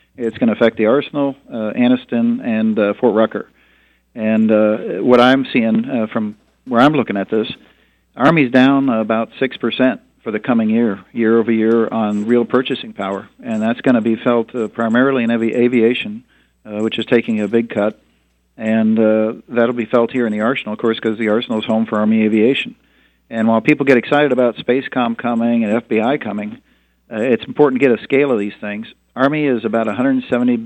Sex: male